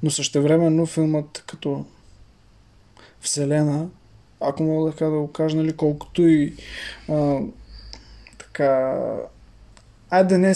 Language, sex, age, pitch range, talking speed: Bulgarian, male, 20-39, 150-175 Hz, 100 wpm